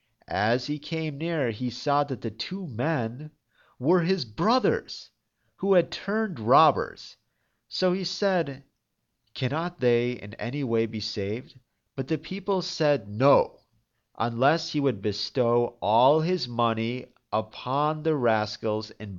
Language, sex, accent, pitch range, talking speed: English, male, American, 115-160 Hz, 135 wpm